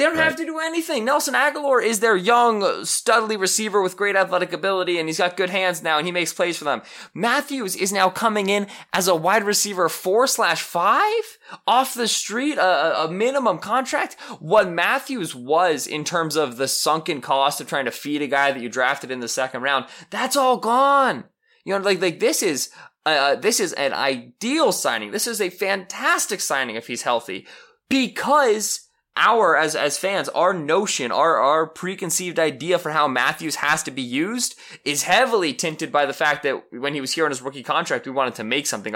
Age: 20-39